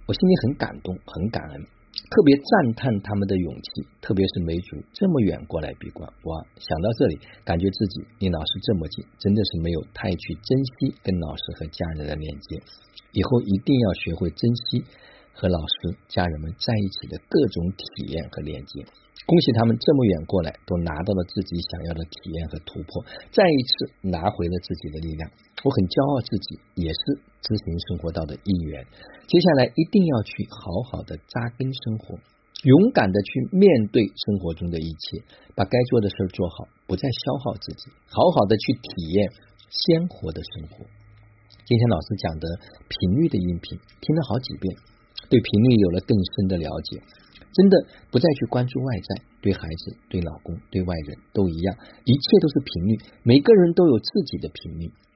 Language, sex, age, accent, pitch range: Chinese, male, 50-69, native, 85-120 Hz